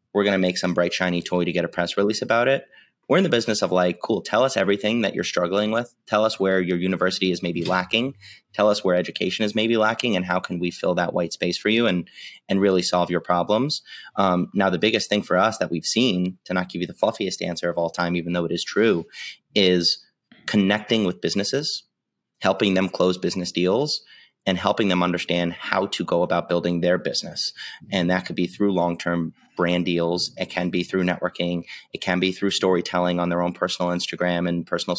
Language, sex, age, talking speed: English, male, 30-49, 225 wpm